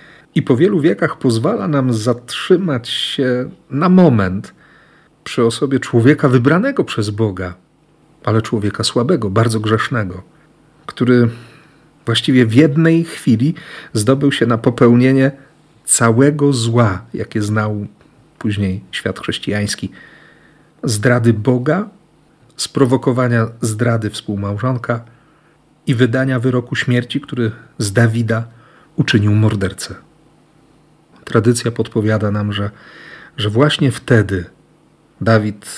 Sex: male